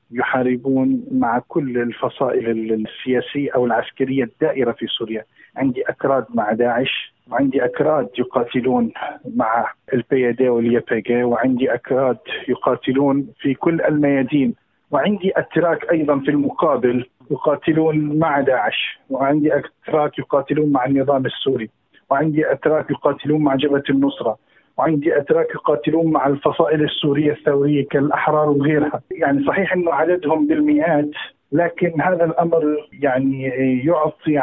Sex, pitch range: male, 135-160 Hz